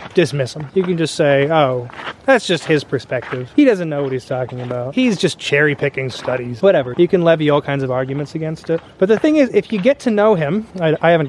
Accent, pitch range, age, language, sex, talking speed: American, 150-185 Hz, 20-39, English, male, 240 wpm